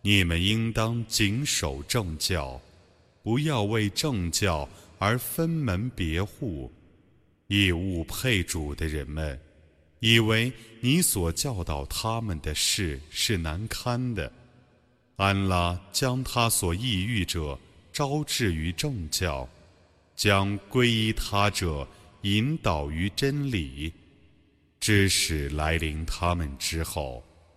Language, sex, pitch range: Arabic, male, 80-115 Hz